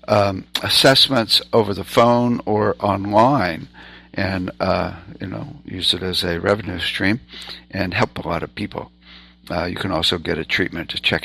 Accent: American